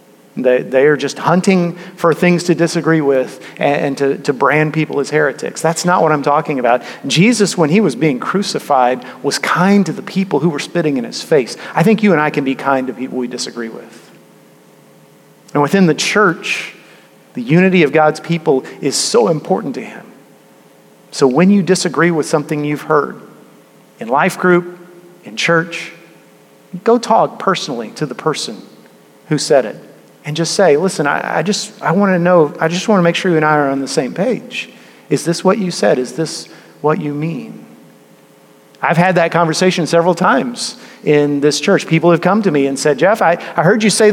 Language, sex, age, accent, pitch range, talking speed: English, male, 40-59, American, 150-195 Hz, 195 wpm